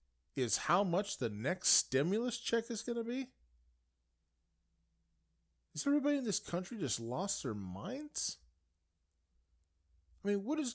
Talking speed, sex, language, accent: 130 wpm, male, English, American